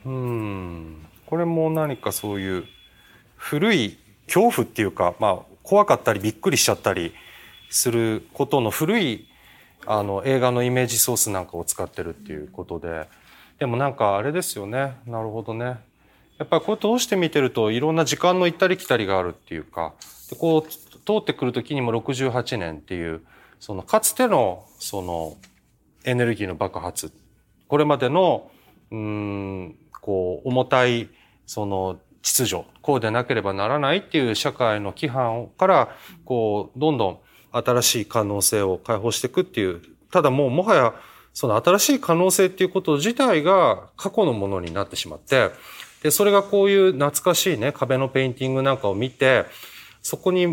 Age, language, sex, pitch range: 30-49, Japanese, male, 105-165 Hz